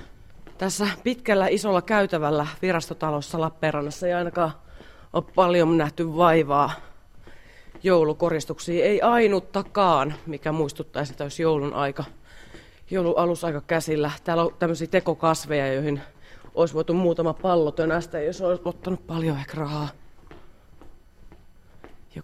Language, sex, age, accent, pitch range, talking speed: Finnish, female, 30-49, native, 140-170 Hz, 110 wpm